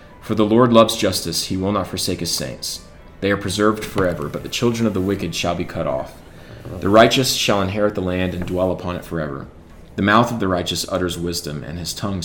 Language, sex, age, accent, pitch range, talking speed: English, male, 30-49, American, 85-105 Hz, 225 wpm